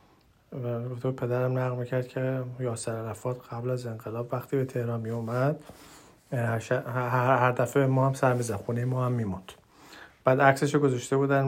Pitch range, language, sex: 115-135 Hz, Persian, male